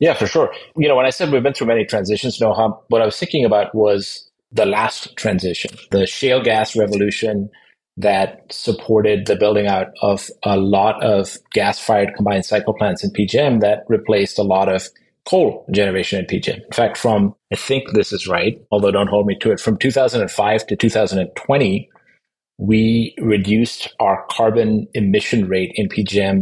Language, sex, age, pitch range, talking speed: English, male, 30-49, 105-125 Hz, 175 wpm